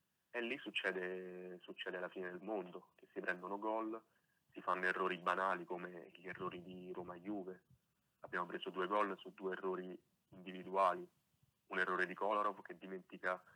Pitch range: 90-95 Hz